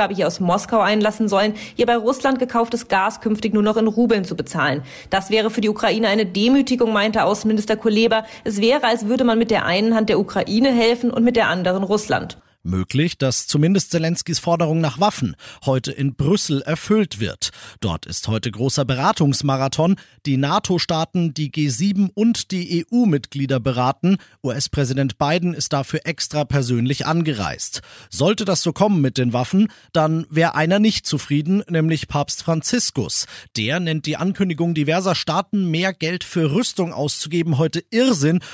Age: 40-59